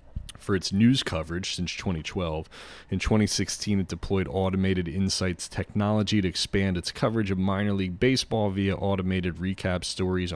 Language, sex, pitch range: English, male, 80-100 Hz